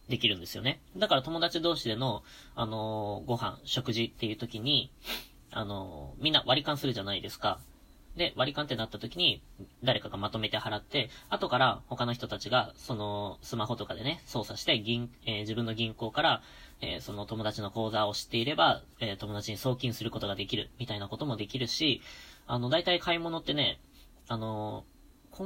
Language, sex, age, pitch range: Japanese, female, 20-39, 105-130 Hz